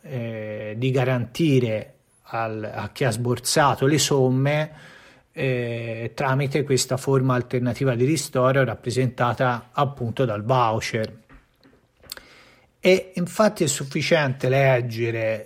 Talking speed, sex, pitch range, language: 95 wpm, male, 125-155 Hz, Italian